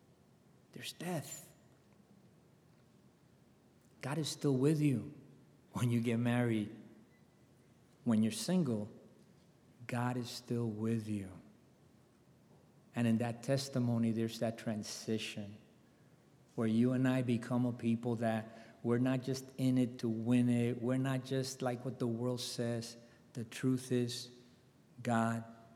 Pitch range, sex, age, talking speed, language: 110-125 Hz, male, 50-69, 125 wpm, English